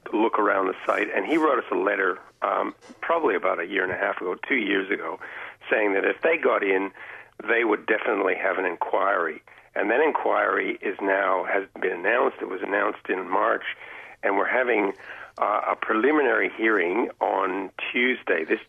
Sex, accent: male, American